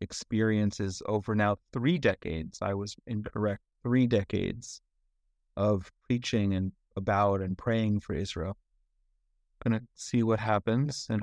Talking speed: 130 wpm